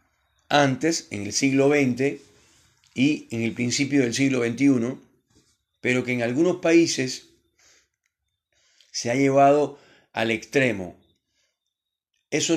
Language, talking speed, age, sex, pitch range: Spanish, 110 wpm, 40-59, male, 110-140 Hz